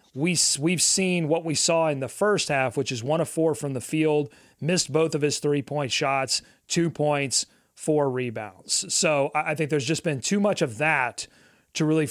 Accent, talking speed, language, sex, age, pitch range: American, 200 wpm, English, male, 30-49, 135-165 Hz